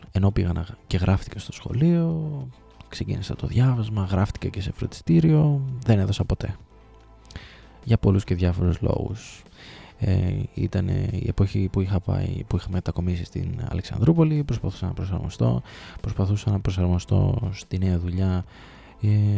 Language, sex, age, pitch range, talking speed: Greek, male, 20-39, 95-125 Hz, 135 wpm